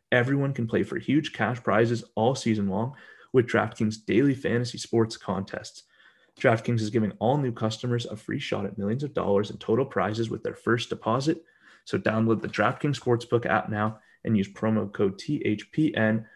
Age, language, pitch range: 30-49, English, 105-120 Hz